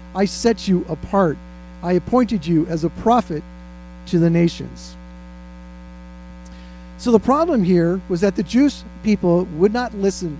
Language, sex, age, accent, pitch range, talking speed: English, male, 50-69, American, 155-220 Hz, 145 wpm